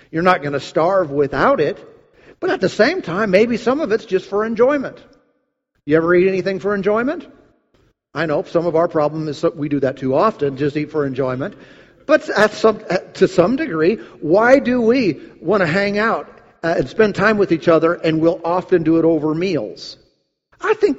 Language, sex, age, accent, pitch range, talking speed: English, male, 50-69, American, 155-240 Hz, 190 wpm